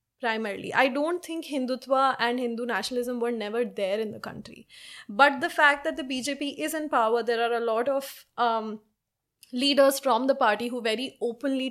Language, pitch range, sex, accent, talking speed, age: English, 230-280 Hz, female, Indian, 185 wpm, 20-39